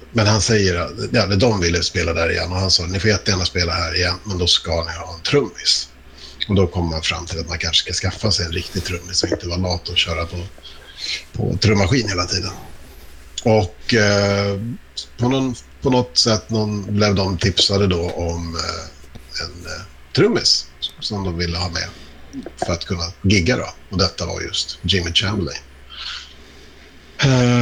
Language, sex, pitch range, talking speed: Swedish, male, 85-110 Hz, 175 wpm